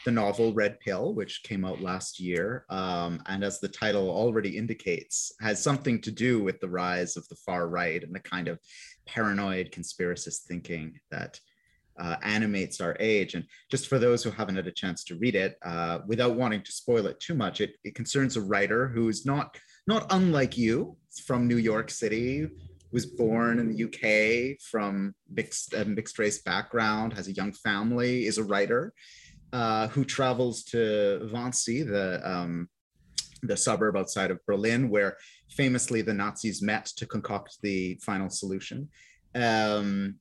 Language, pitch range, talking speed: English, 95-120 Hz, 170 wpm